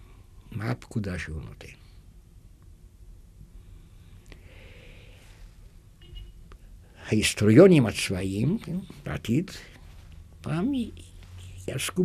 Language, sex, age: Hebrew, male, 60-79